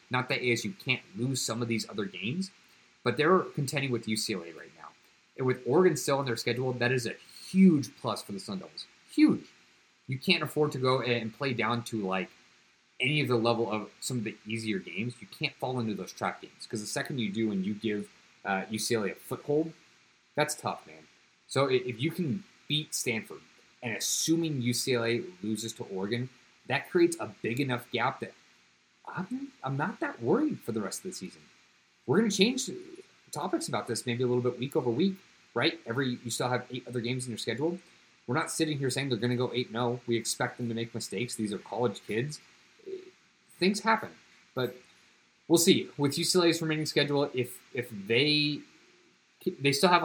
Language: English